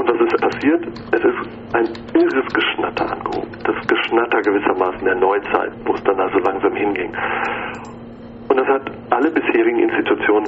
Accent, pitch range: German, 355-400 Hz